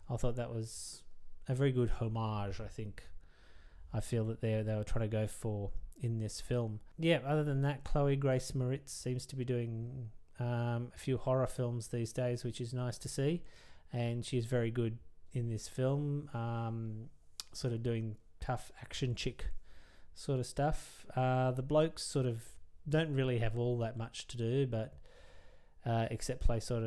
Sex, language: male, English